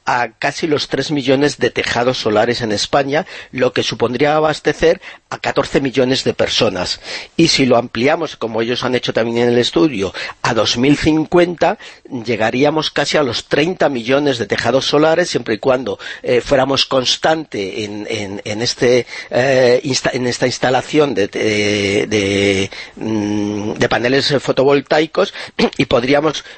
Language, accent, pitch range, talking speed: English, Spanish, 115-145 Hz, 130 wpm